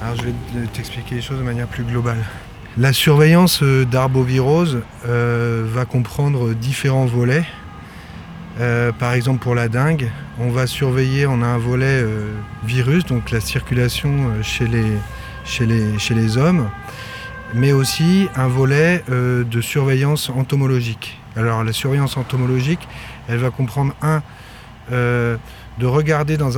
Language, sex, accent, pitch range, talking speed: French, male, French, 120-140 Hz, 145 wpm